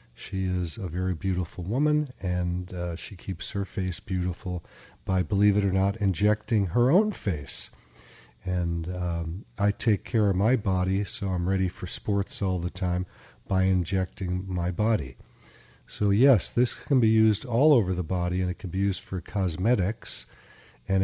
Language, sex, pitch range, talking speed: English, male, 90-110 Hz, 170 wpm